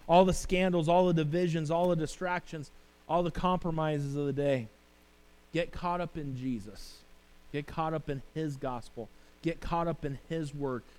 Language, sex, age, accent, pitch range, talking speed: English, male, 30-49, American, 120-160 Hz, 175 wpm